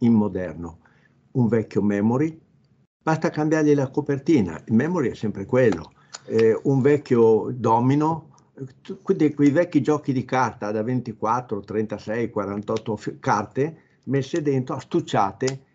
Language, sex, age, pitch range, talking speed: Italian, male, 60-79, 110-145 Hz, 115 wpm